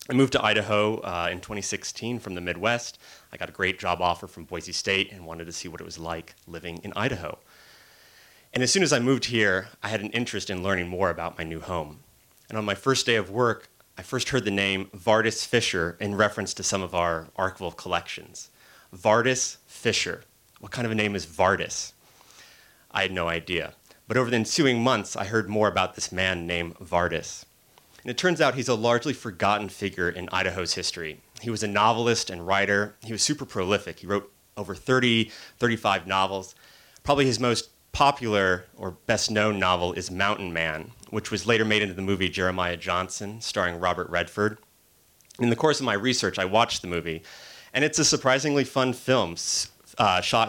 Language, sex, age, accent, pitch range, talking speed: English, male, 30-49, American, 90-115 Hz, 195 wpm